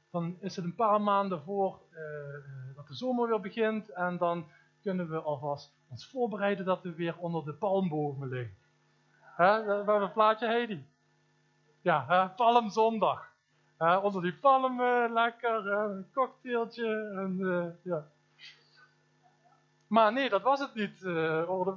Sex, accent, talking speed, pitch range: male, Dutch, 155 wpm, 155-205 Hz